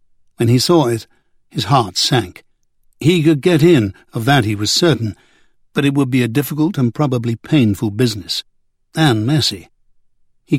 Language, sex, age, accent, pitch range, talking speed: English, male, 60-79, British, 115-145 Hz, 165 wpm